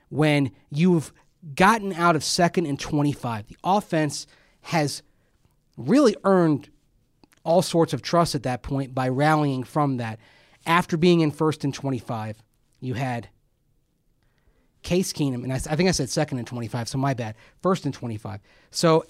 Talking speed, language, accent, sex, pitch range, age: 155 wpm, English, American, male, 130-165 Hz, 30-49